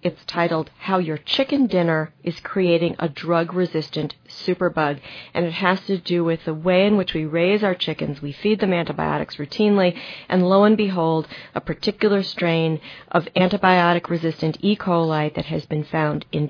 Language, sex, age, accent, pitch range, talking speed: English, female, 40-59, American, 160-185 Hz, 165 wpm